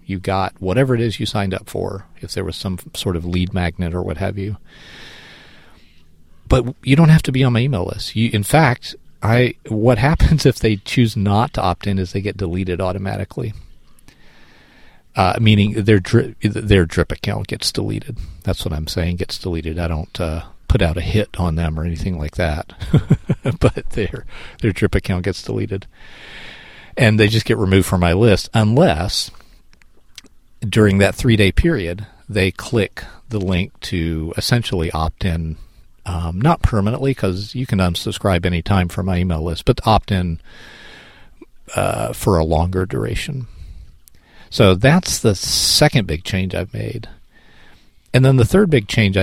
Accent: American